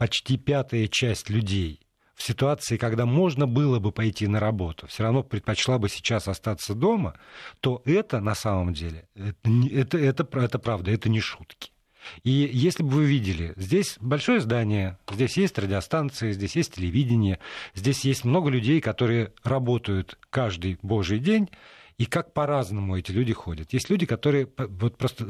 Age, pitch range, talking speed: 50-69, 105-135 Hz, 160 wpm